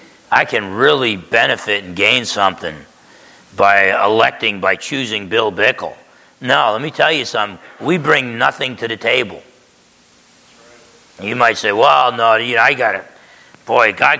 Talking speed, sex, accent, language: 155 wpm, male, American, English